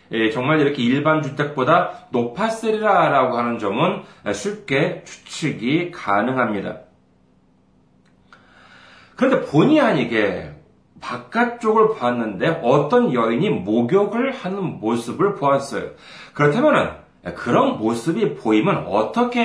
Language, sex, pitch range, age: Korean, male, 125-200 Hz, 40-59